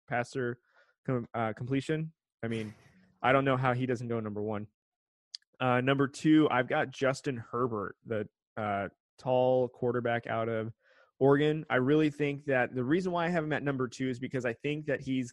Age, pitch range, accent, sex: 20-39, 115-135 Hz, American, male